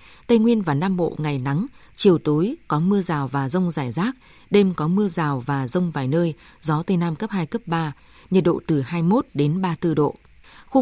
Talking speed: 215 wpm